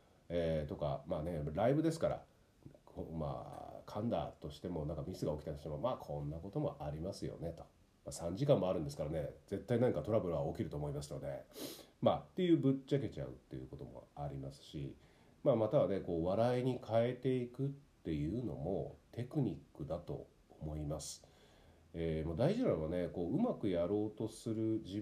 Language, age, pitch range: Japanese, 40-59, 80-130 Hz